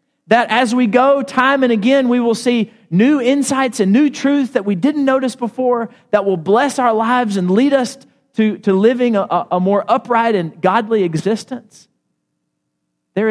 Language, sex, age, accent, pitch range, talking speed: English, male, 40-59, American, 135-205 Hz, 175 wpm